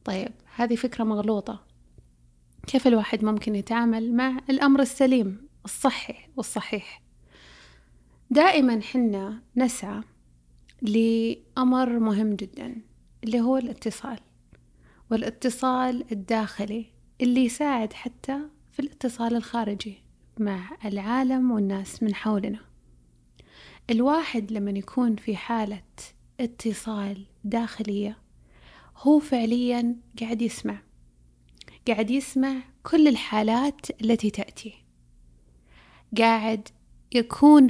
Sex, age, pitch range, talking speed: female, 30-49, 205-260 Hz, 85 wpm